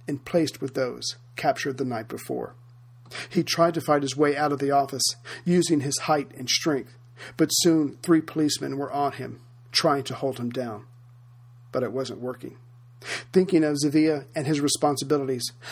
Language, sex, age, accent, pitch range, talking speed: English, male, 50-69, American, 120-150 Hz, 170 wpm